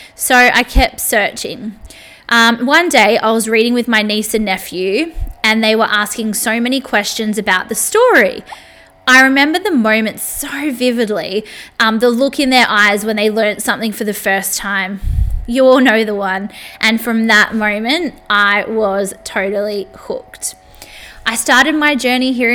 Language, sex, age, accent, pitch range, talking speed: English, female, 20-39, Australian, 210-250 Hz, 170 wpm